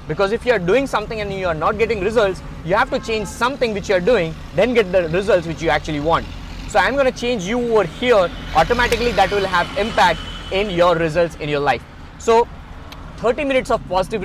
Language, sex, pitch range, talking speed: English, male, 160-210 Hz, 230 wpm